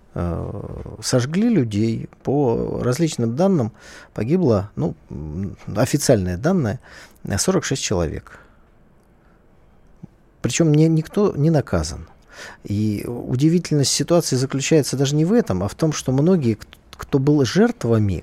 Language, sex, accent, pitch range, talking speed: Russian, male, native, 105-150 Hz, 100 wpm